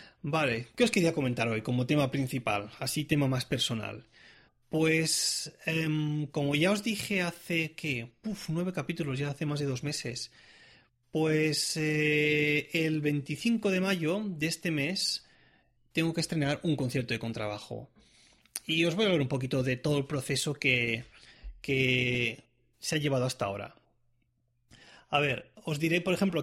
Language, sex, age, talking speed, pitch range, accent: Spanish, male, 30-49, 155 wpm, 125-170 Hz, Spanish